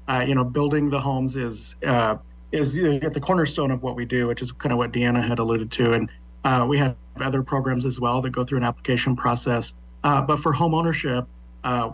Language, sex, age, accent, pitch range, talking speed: English, male, 40-59, American, 120-140 Hz, 225 wpm